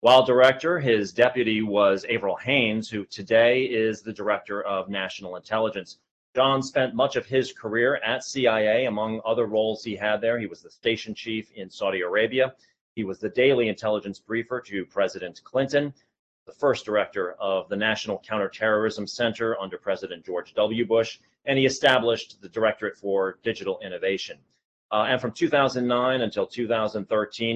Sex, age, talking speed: male, 30-49, 160 wpm